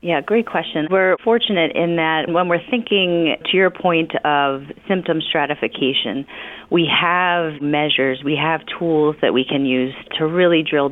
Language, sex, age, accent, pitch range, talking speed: English, female, 30-49, American, 130-170 Hz, 160 wpm